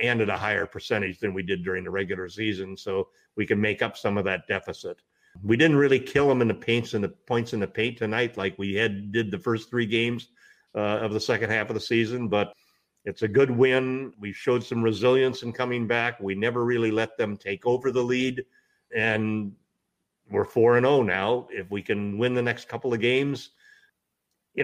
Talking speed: 215 wpm